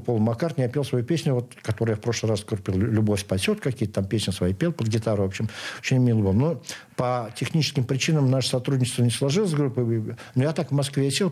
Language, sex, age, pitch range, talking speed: Russian, male, 60-79, 110-130 Hz, 210 wpm